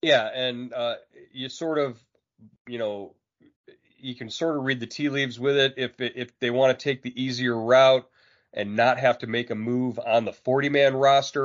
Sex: male